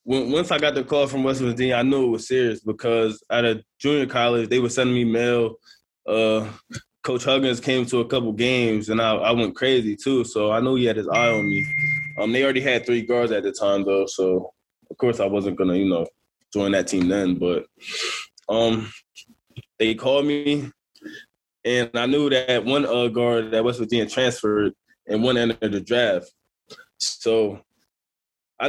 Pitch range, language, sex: 110-135 Hz, English, male